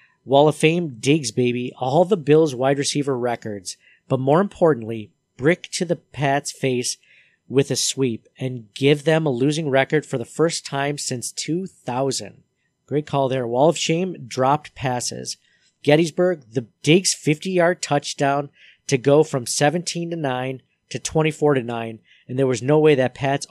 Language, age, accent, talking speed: English, 40-59, American, 165 wpm